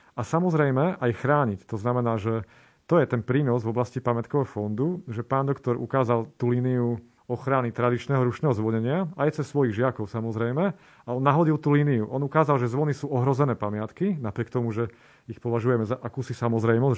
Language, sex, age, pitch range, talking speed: Slovak, male, 30-49, 115-130 Hz, 175 wpm